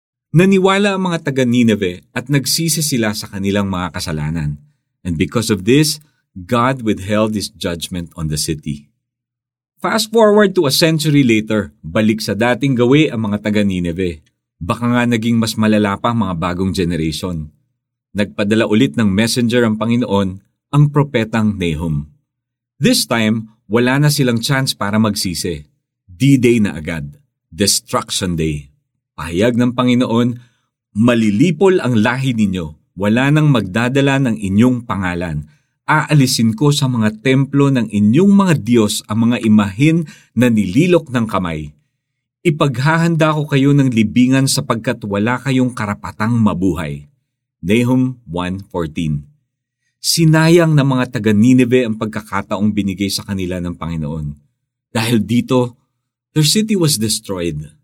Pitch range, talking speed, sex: 100-135 Hz, 130 wpm, male